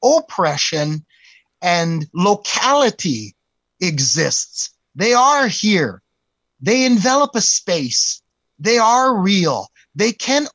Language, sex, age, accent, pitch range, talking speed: English, male, 30-49, American, 155-205 Hz, 90 wpm